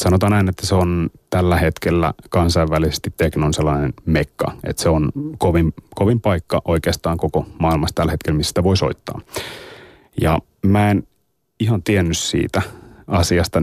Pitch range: 85-100 Hz